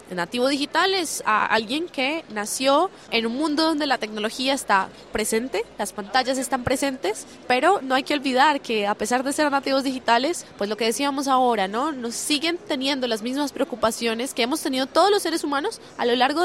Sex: female